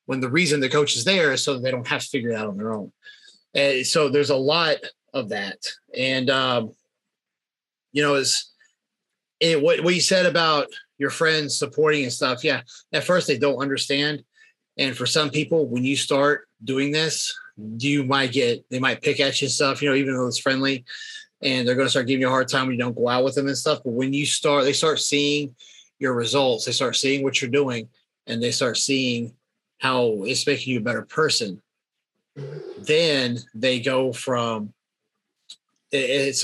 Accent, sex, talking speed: American, male, 205 wpm